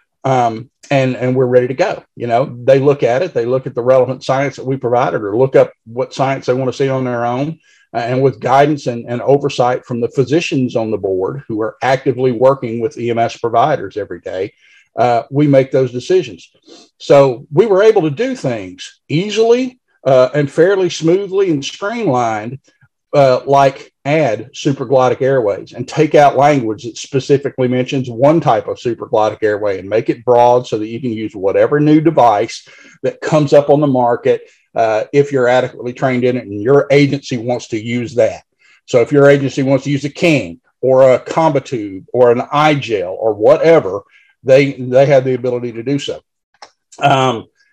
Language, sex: English, male